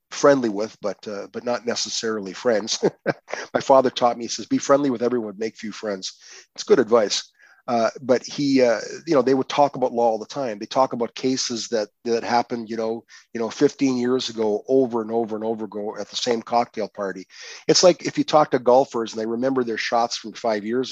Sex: male